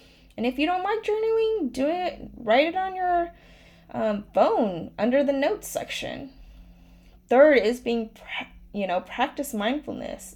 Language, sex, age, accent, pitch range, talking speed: English, female, 20-39, American, 190-255 Hz, 145 wpm